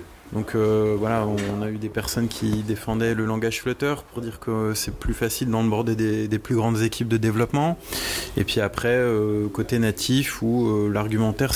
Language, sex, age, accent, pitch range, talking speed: French, male, 20-39, French, 105-120 Hz, 185 wpm